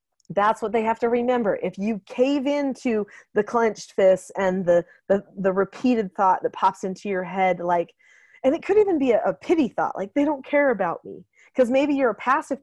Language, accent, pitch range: English, American, 195-260 Hz